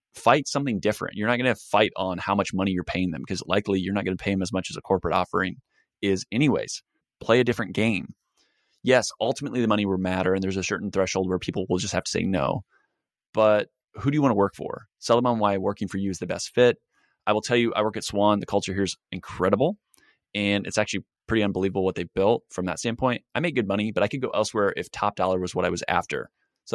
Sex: male